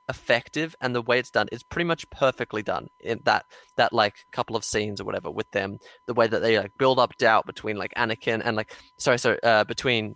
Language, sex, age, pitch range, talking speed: English, male, 20-39, 115-135 Hz, 230 wpm